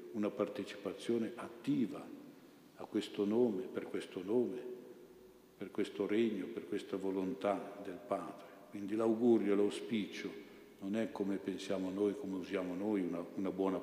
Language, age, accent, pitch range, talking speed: Italian, 60-79, native, 95-110 Hz, 135 wpm